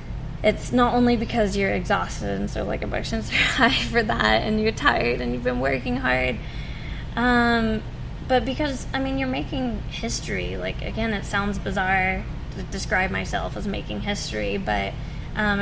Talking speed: 165 wpm